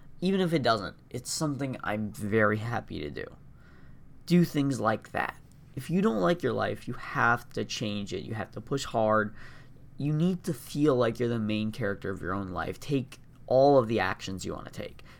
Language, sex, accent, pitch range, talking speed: English, male, American, 110-135 Hz, 210 wpm